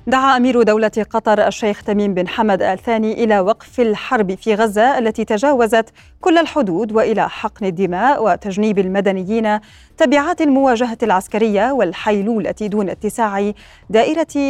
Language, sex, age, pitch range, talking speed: Arabic, female, 30-49, 205-245 Hz, 125 wpm